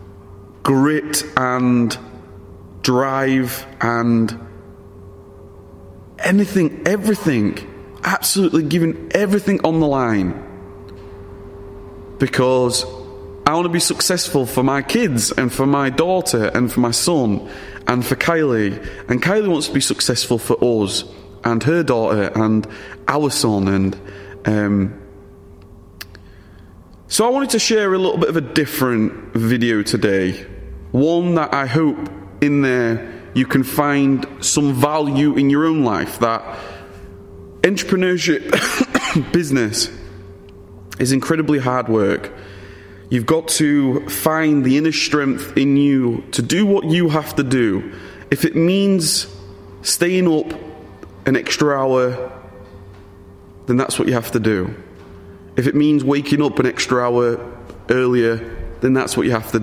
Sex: male